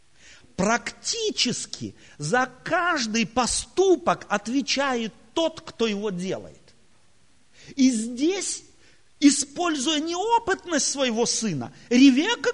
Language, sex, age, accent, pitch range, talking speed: Russian, male, 40-59, native, 195-320 Hz, 75 wpm